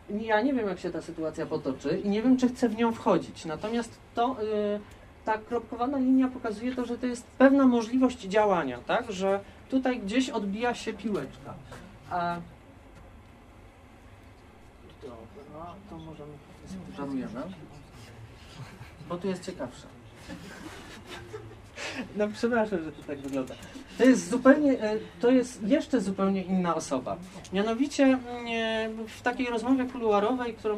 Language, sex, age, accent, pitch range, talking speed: Polish, male, 30-49, native, 180-250 Hz, 120 wpm